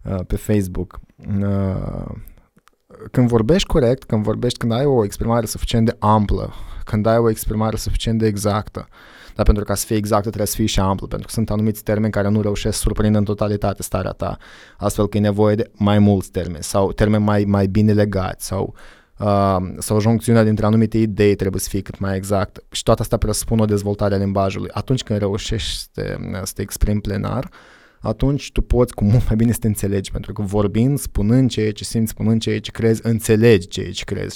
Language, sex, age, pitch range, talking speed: Romanian, male, 20-39, 100-115 Hz, 205 wpm